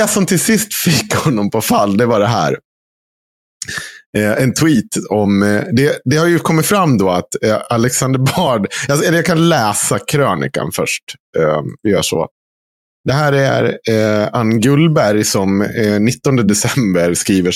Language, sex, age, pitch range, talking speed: Swedish, male, 30-49, 100-150 Hz, 165 wpm